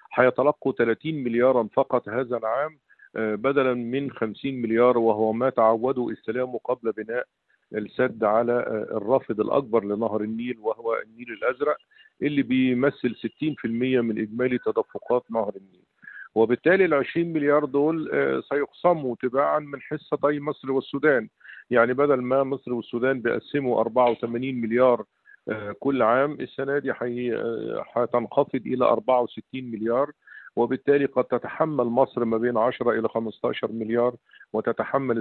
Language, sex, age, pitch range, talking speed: Arabic, male, 50-69, 115-140 Hz, 120 wpm